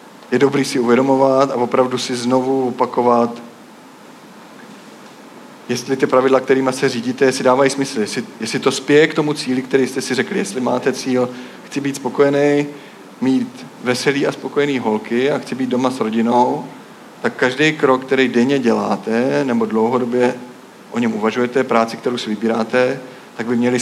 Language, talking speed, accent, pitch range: Czech, 160 wpm, native, 120-140 Hz